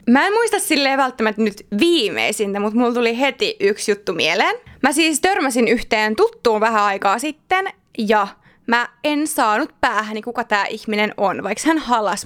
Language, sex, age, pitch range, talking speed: Finnish, female, 20-39, 230-355 Hz, 165 wpm